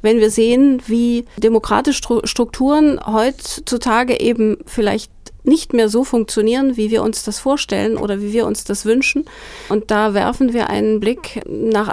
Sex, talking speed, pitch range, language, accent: female, 155 wpm, 195-225 Hz, German, German